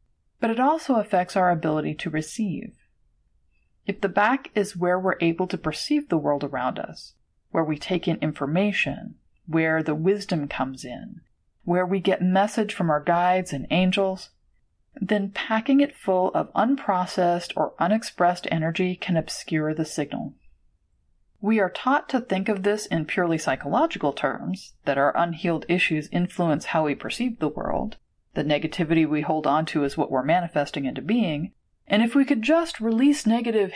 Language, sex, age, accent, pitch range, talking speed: English, female, 30-49, American, 155-210 Hz, 165 wpm